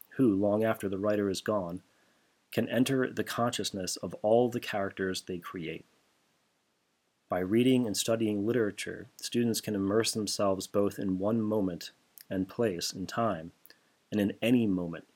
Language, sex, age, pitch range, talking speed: English, male, 30-49, 95-110 Hz, 150 wpm